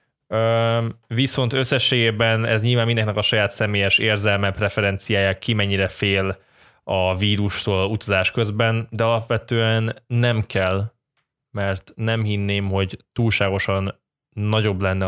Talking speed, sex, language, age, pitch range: 115 wpm, male, Hungarian, 10-29, 95-115 Hz